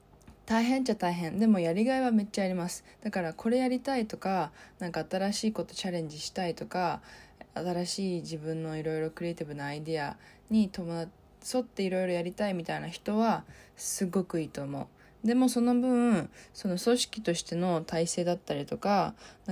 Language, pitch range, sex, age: Japanese, 165-215 Hz, female, 20-39